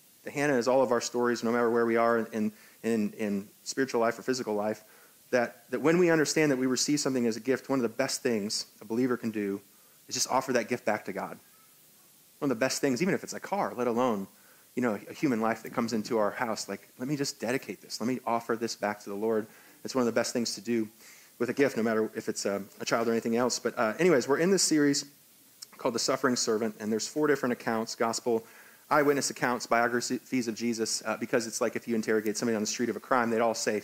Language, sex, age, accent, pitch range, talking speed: English, male, 30-49, American, 110-130 Hz, 255 wpm